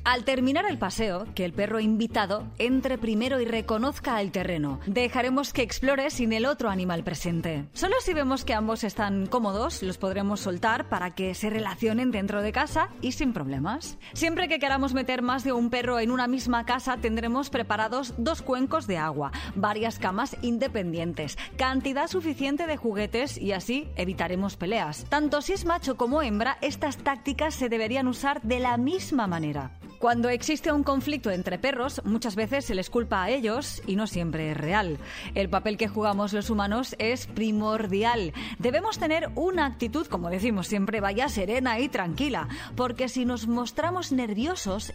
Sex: female